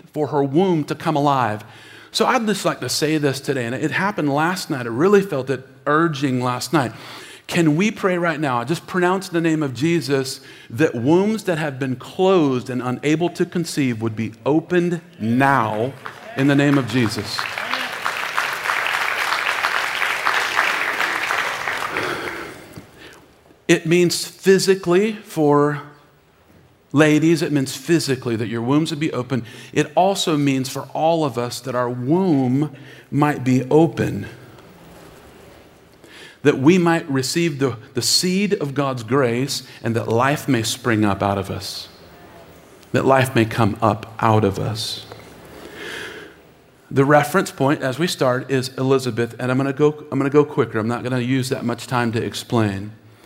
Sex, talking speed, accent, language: male, 150 wpm, American, English